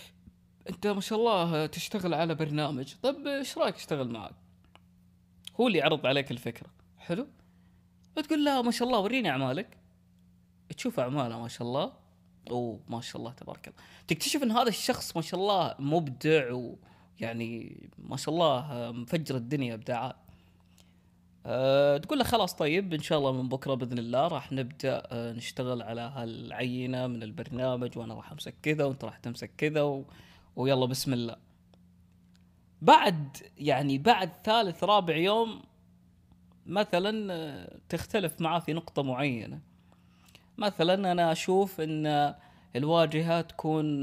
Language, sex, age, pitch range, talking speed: Arabic, female, 20-39, 115-165 Hz, 140 wpm